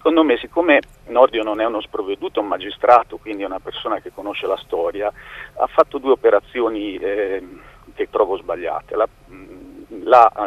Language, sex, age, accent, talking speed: Italian, male, 40-59, native, 165 wpm